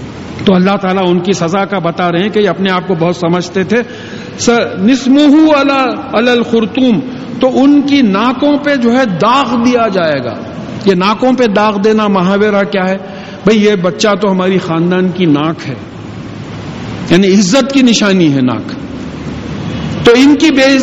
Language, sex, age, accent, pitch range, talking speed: English, male, 50-69, Indian, 180-240 Hz, 155 wpm